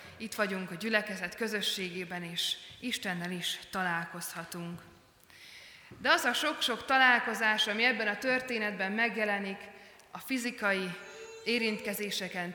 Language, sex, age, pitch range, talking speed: Hungarian, female, 20-39, 190-225 Hz, 110 wpm